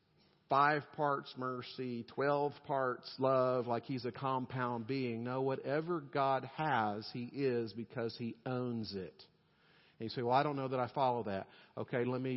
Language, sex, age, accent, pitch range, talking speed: English, male, 50-69, American, 130-185 Hz, 170 wpm